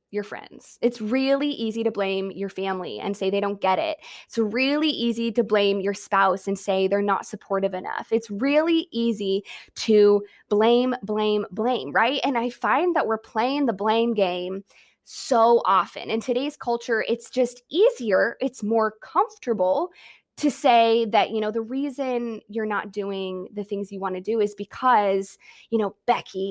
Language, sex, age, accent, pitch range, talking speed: English, female, 20-39, American, 200-250 Hz, 175 wpm